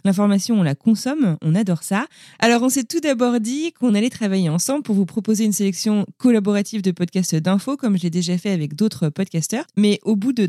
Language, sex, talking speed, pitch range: French, female, 220 wpm, 165-215 Hz